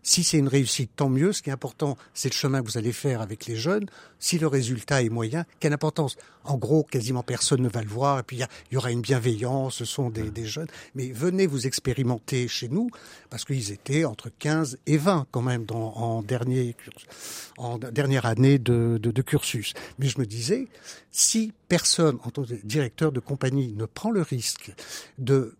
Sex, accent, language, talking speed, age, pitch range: male, French, French, 205 wpm, 60-79, 120-150 Hz